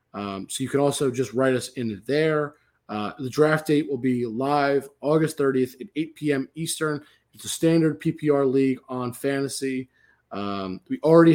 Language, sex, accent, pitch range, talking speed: English, male, American, 125-150 Hz, 175 wpm